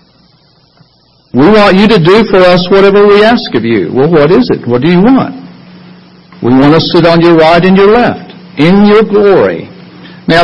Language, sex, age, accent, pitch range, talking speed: English, male, 60-79, American, 165-215 Hz, 195 wpm